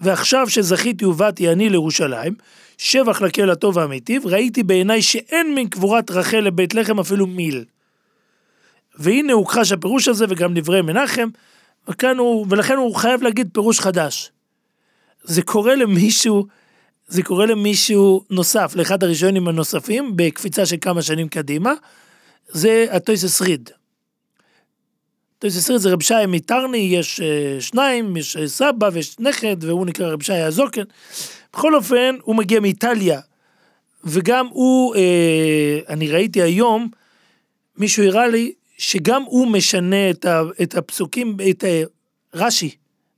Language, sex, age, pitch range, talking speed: Hebrew, male, 40-59, 175-230 Hz, 130 wpm